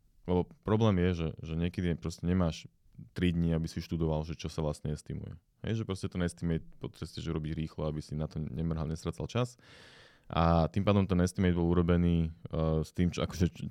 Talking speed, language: 195 wpm, Slovak